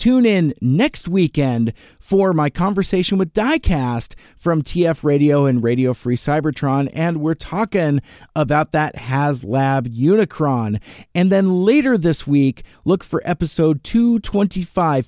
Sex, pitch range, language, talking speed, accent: male, 140-185 Hz, English, 125 wpm, American